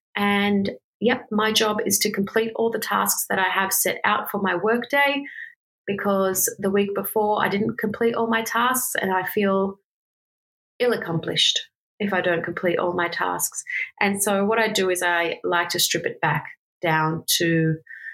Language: English